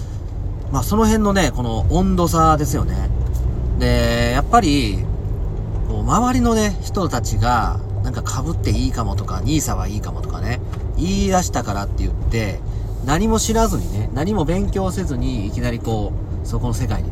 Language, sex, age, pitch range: Japanese, male, 40-59, 95-115 Hz